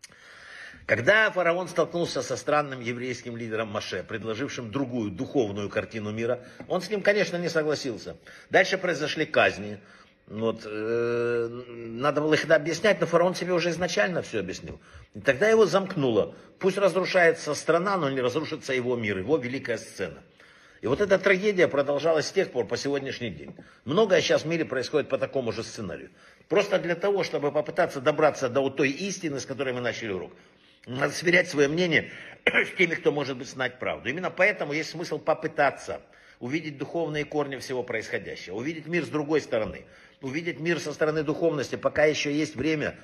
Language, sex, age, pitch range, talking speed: Russian, male, 60-79, 130-165 Hz, 160 wpm